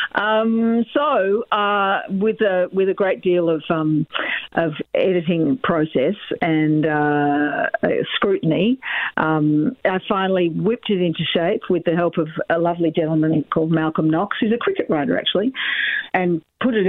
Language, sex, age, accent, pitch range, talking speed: English, female, 50-69, Australian, 165-205 Hz, 150 wpm